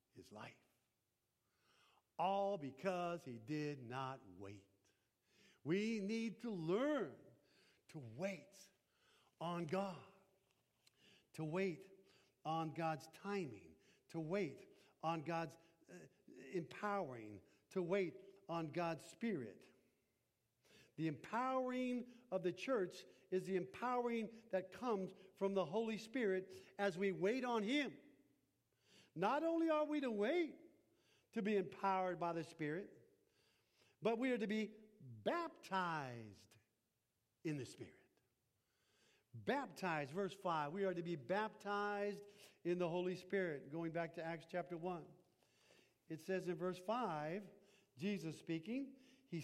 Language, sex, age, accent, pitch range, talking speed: English, male, 60-79, American, 155-205 Hz, 120 wpm